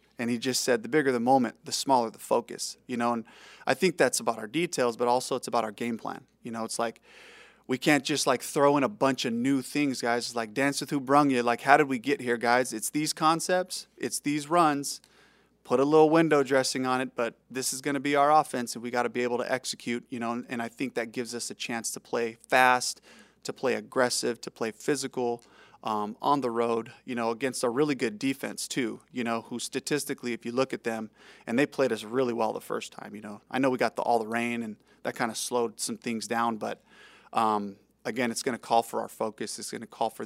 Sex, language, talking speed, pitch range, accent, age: male, English, 250 wpm, 120-145 Hz, American, 20-39